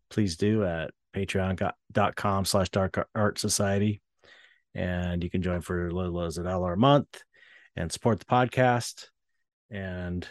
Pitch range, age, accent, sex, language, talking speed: 90-120 Hz, 30-49, American, male, English, 135 wpm